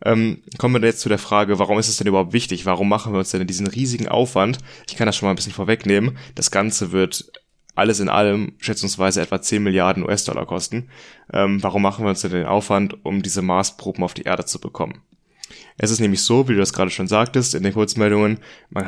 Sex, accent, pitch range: male, German, 95-105 Hz